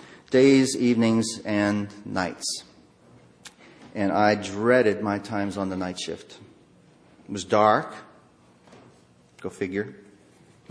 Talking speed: 105 wpm